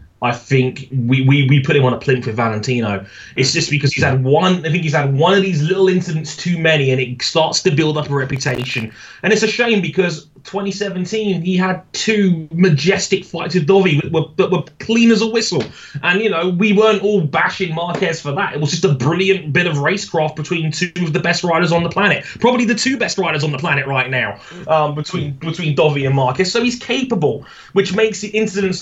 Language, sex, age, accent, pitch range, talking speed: English, male, 20-39, British, 120-180 Hz, 220 wpm